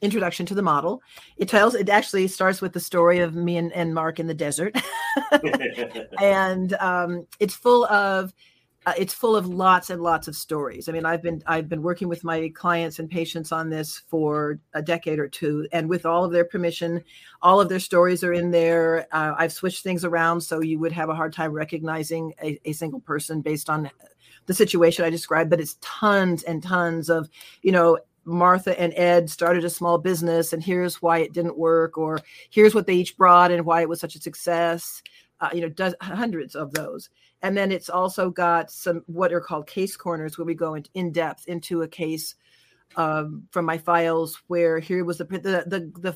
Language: English